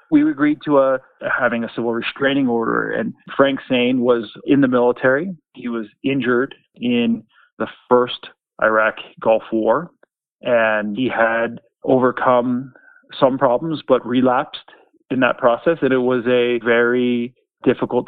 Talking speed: 140 wpm